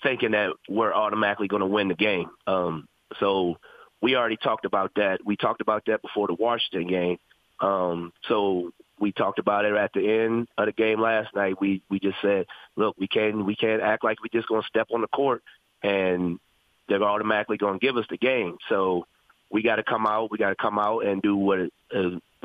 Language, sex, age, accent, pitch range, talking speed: English, male, 30-49, American, 100-115 Hz, 215 wpm